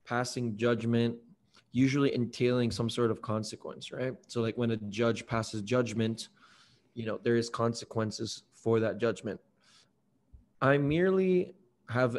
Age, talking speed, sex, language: 20-39, 135 wpm, male, English